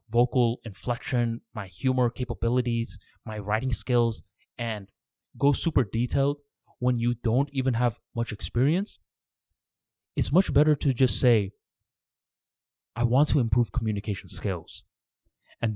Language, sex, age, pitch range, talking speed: English, male, 20-39, 100-125 Hz, 120 wpm